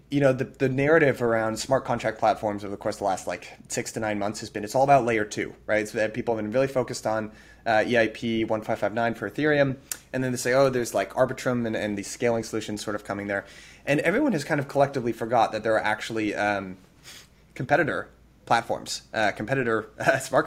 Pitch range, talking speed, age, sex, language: 110-135 Hz, 220 wpm, 20-39, male, English